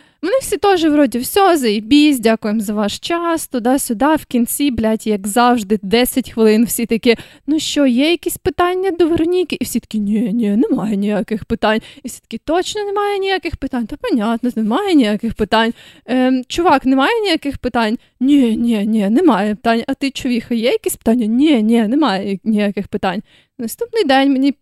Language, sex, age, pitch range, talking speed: Ukrainian, female, 20-39, 230-315 Hz, 175 wpm